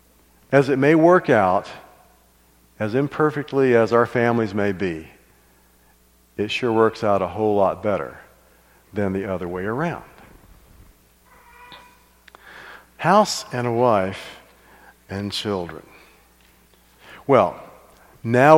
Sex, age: male, 50-69